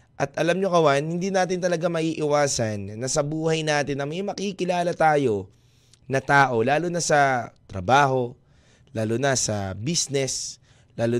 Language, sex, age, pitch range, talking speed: Filipino, male, 20-39, 120-155 Hz, 145 wpm